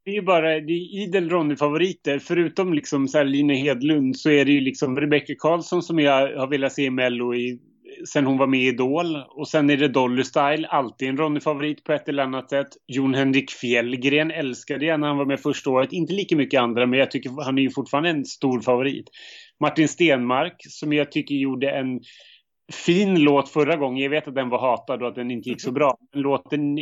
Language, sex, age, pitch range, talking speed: Swedish, male, 30-49, 130-155 Hz, 215 wpm